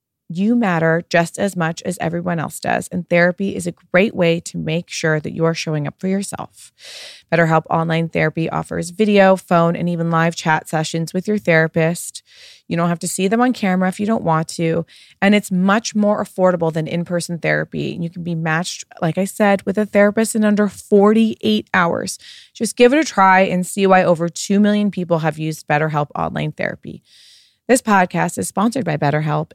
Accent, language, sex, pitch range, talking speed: American, English, female, 165-205 Hz, 200 wpm